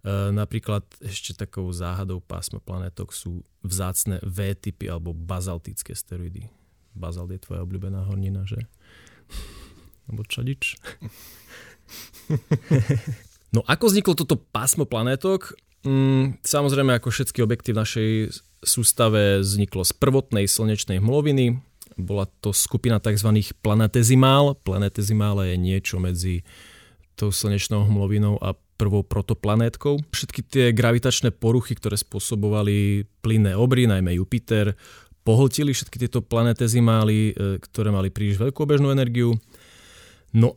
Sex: male